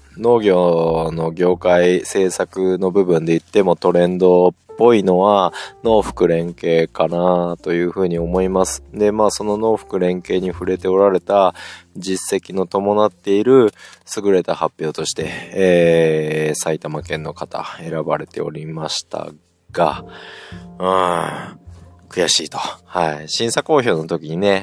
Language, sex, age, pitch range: Japanese, male, 20-39, 90-135 Hz